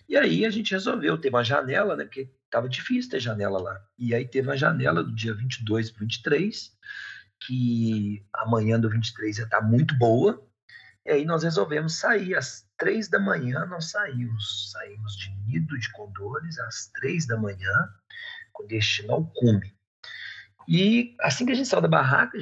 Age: 40-59